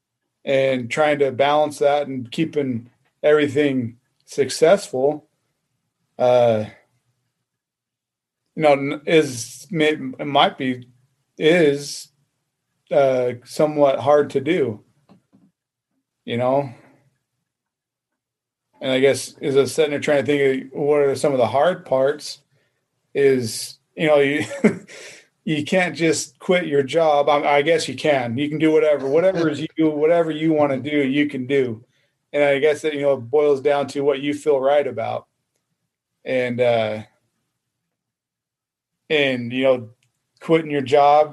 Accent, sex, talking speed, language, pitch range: American, male, 130 wpm, English, 130-150 Hz